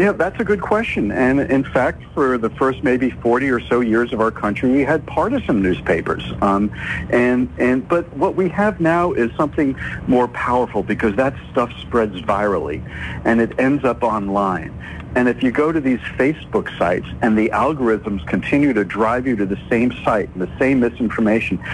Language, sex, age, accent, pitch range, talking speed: English, male, 60-79, American, 115-155 Hz, 190 wpm